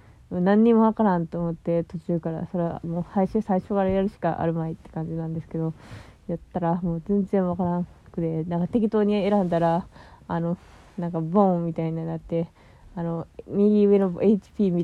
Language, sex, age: Japanese, female, 20-39